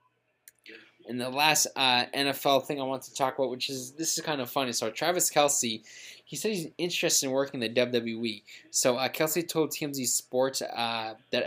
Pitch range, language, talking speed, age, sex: 120-140 Hz, English, 200 wpm, 20-39, male